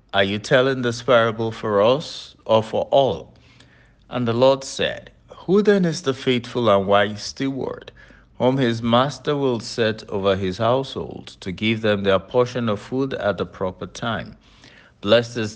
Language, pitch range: English, 100-130 Hz